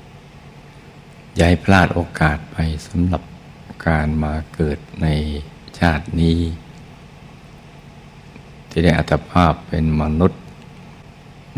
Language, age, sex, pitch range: Thai, 60-79, male, 80-85 Hz